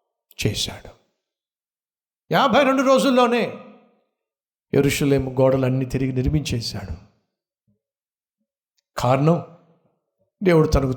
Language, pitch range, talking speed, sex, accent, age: Telugu, 130-215 Hz, 60 wpm, male, native, 60-79